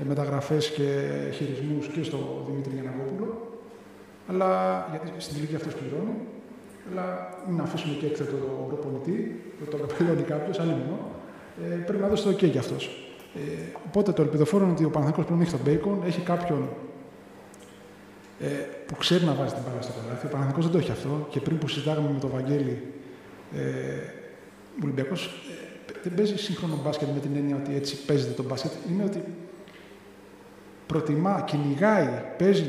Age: 20-39